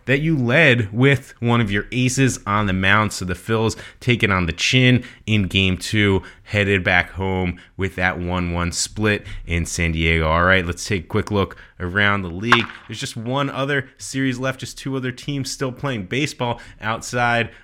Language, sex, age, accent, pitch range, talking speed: English, male, 30-49, American, 90-115 Hz, 185 wpm